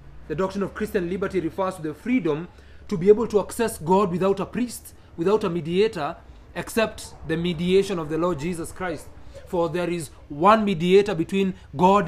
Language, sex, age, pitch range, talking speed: English, male, 30-49, 160-205 Hz, 180 wpm